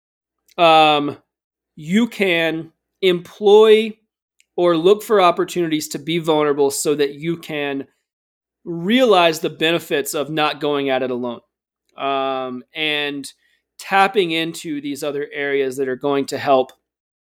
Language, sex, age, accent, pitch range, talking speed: English, male, 30-49, American, 140-190 Hz, 125 wpm